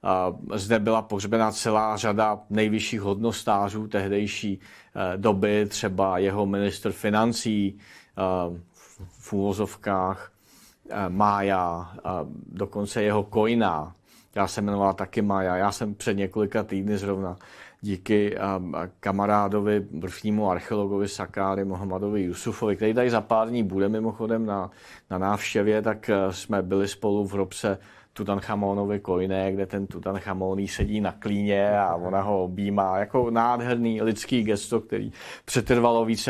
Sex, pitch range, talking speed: male, 100-115 Hz, 120 wpm